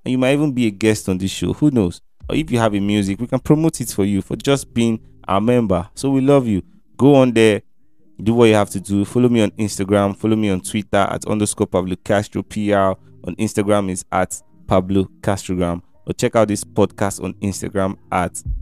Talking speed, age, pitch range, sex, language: 220 wpm, 20-39, 95-115 Hz, male, English